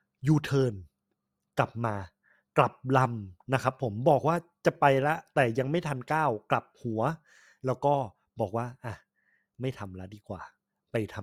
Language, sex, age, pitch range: Thai, male, 20-39, 110-150 Hz